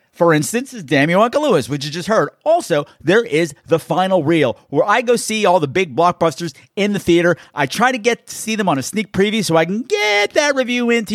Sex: male